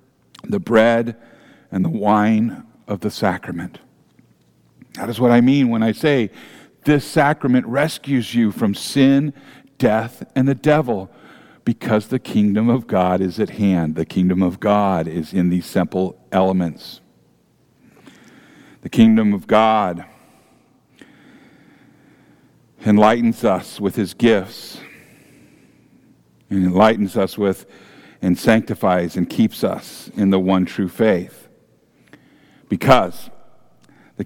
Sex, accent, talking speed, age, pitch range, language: male, American, 120 wpm, 50-69, 90-115 Hz, English